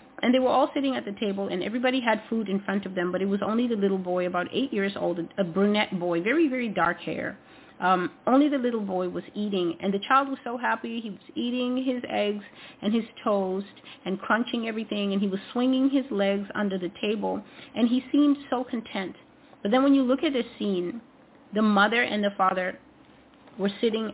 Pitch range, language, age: 190-250 Hz, English, 30-49